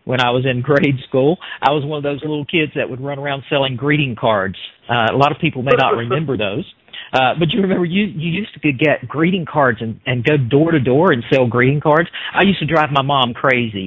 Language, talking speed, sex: English, 240 wpm, male